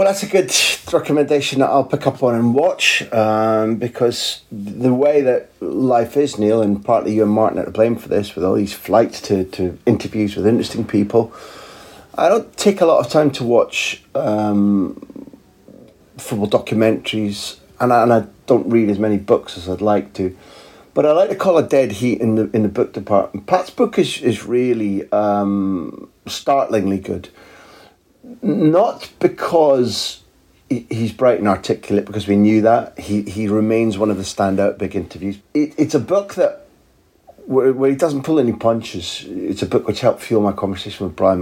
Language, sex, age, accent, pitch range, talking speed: English, male, 40-59, British, 100-120 Hz, 185 wpm